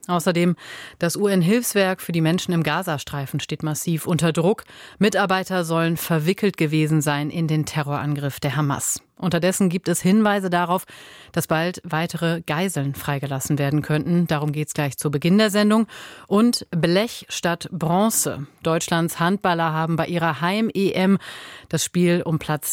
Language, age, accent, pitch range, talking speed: German, 30-49, German, 160-185 Hz, 150 wpm